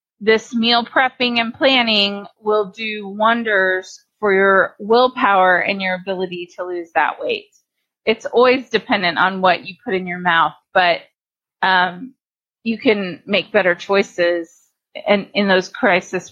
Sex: female